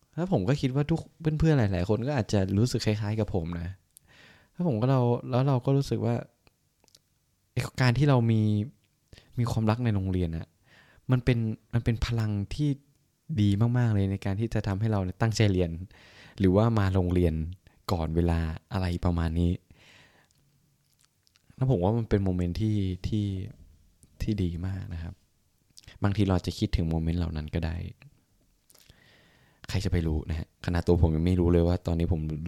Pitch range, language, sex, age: 85-115 Hz, Thai, male, 20-39